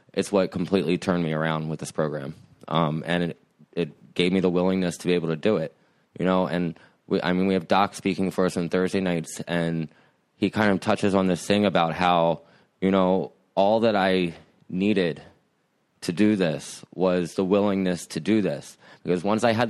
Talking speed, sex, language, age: 205 wpm, male, English, 20-39